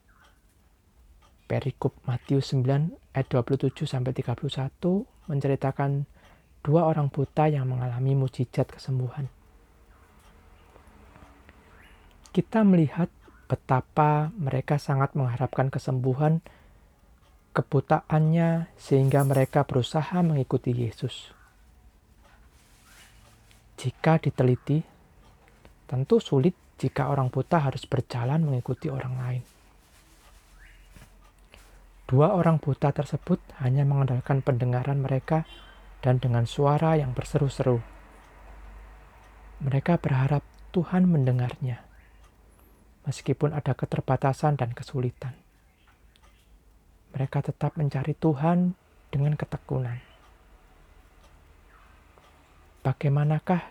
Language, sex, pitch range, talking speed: Indonesian, male, 95-150 Hz, 75 wpm